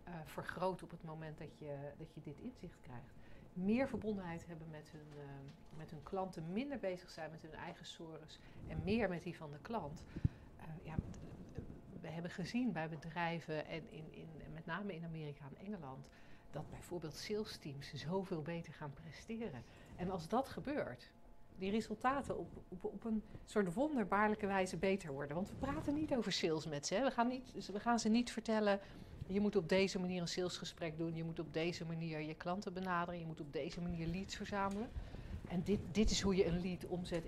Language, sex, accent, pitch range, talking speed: Dutch, female, Dutch, 160-210 Hz, 200 wpm